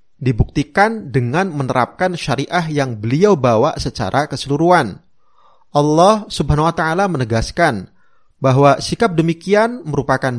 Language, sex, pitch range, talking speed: Malay, male, 130-170 Hz, 105 wpm